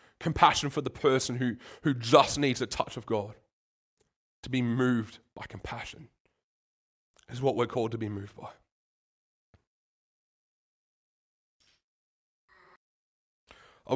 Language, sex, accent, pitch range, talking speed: English, male, Australian, 100-125 Hz, 110 wpm